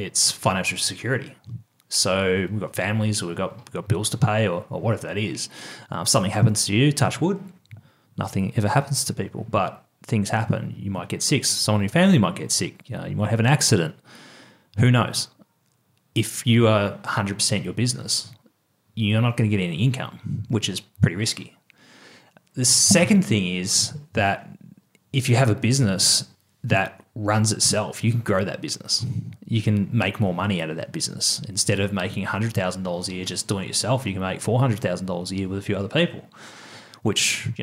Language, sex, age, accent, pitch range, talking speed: English, male, 30-49, Australian, 100-125 Hz, 200 wpm